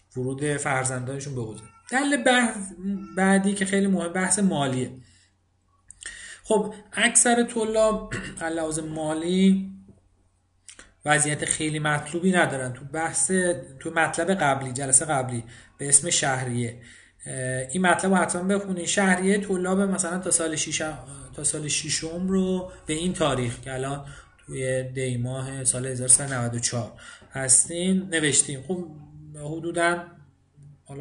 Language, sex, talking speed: Persian, male, 110 wpm